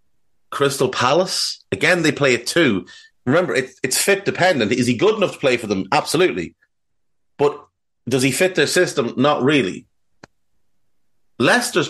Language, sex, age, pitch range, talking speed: English, male, 30-49, 110-145 Hz, 150 wpm